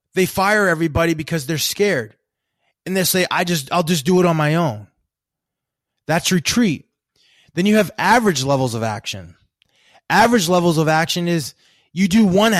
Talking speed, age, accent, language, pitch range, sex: 175 wpm, 20-39, American, English, 155-200 Hz, male